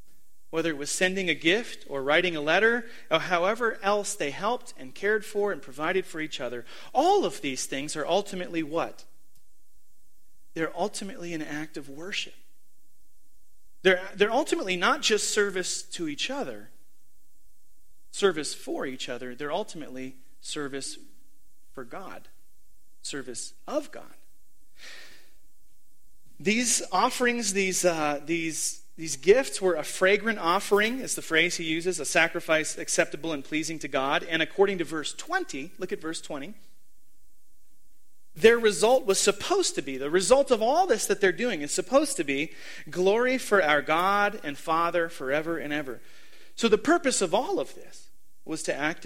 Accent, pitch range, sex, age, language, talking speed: American, 150-215 Hz, male, 30-49, English, 155 wpm